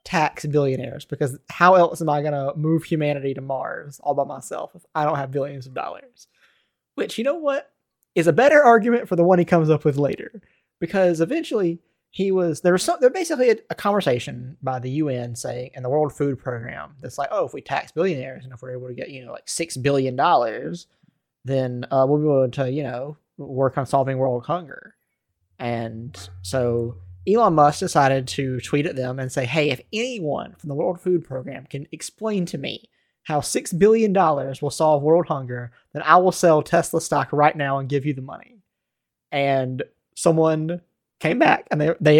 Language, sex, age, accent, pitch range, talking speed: English, male, 20-39, American, 135-190 Hz, 200 wpm